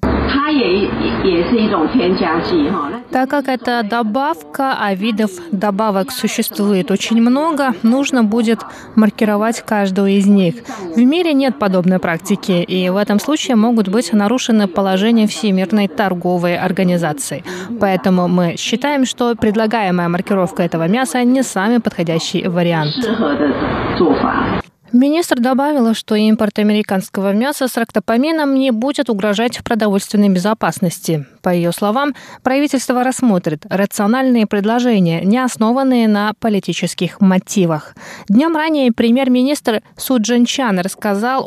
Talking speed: 110 wpm